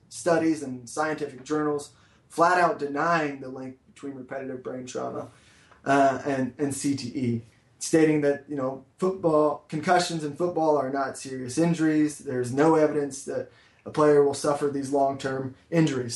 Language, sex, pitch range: English, male, 135-150 Hz